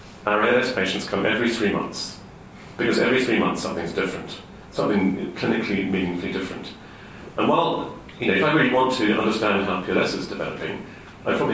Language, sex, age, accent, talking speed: English, male, 40-59, British, 170 wpm